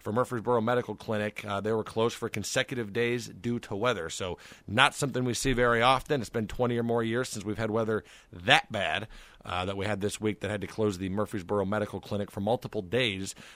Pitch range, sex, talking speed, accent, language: 105-130 Hz, male, 220 wpm, American, English